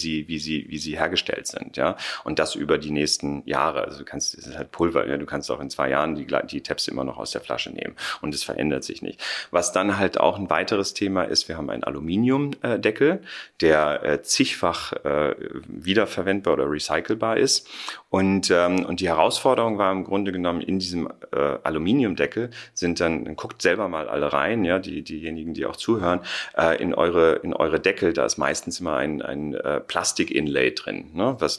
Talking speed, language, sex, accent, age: 185 wpm, German, male, German, 30-49